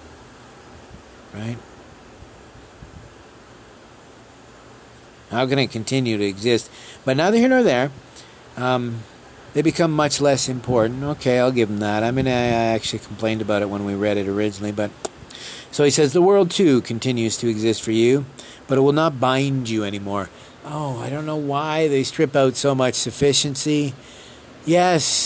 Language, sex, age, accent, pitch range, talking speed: English, male, 50-69, American, 110-140 Hz, 155 wpm